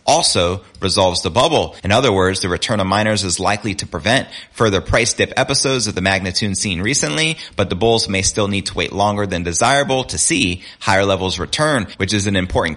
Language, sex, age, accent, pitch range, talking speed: English, male, 30-49, American, 95-120 Hz, 205 wpm